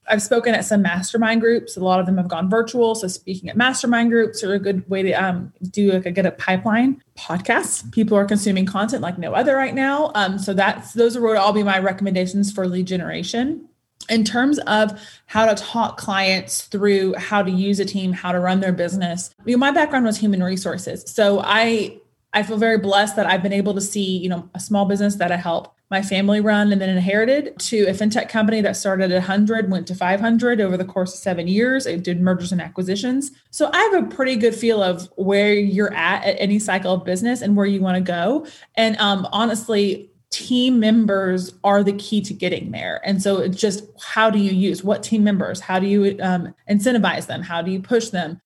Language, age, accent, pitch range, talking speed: English, 20-39, American, 185-220 Hz, 225 wpm